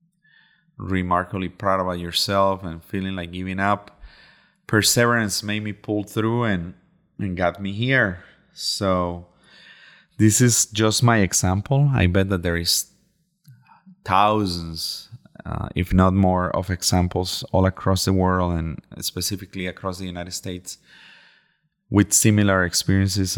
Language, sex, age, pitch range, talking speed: English, male, 30-49, 90-115 Hz, 130 wpm